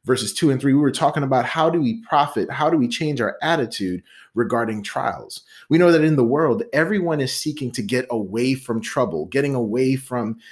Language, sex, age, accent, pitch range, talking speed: English, male, 30-49, American, 120-160 Hz, 210 wpm